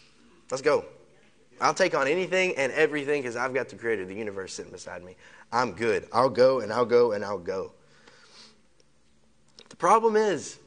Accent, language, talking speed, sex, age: American, English, 175 wpm, male, 20-39